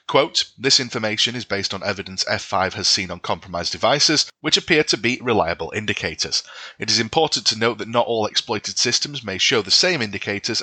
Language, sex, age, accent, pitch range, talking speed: English, male, 30-49, British, 100-125 Hz, 190 wpm